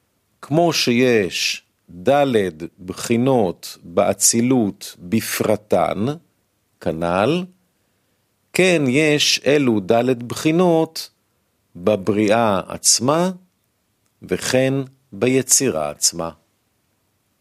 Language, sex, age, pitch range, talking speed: Hebrew, male, 50-69, 100-145 Hz, 60 wpm